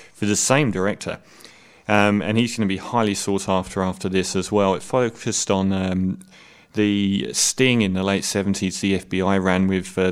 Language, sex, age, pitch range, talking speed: English, male, 30-49, 95-110 Hz, 190 wpm